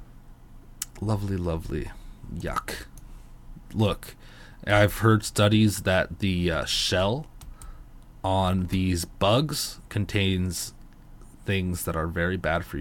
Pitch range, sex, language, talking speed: 90-120 Hz, male, English, 100 wpm